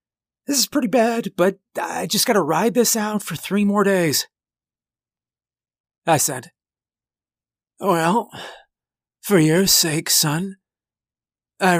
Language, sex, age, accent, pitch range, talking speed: English, male, 40-59, American, 130-175 Hz, 115 wpm